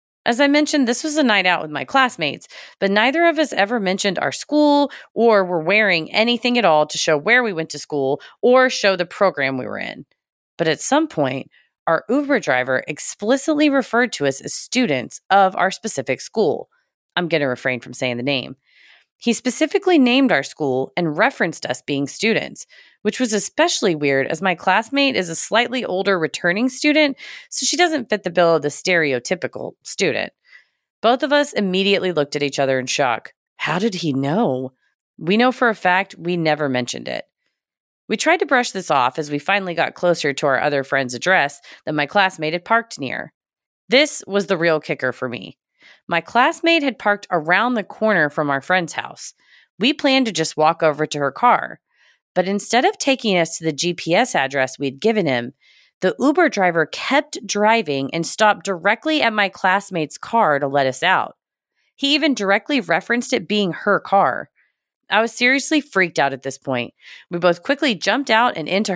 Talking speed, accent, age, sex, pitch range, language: 190 wpm, American, 30-49, female, 155-245 Hz, English